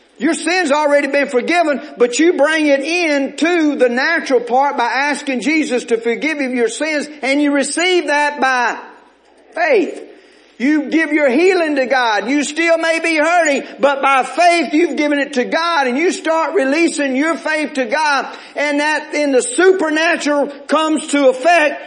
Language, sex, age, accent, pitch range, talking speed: English, male, 50-69, American, 260-325 Hz, 175 wpm